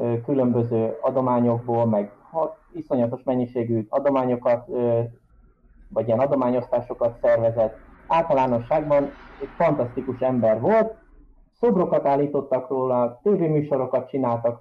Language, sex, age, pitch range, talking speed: Hungarian, male, 30-49, 120-155 Hz, 80 wpm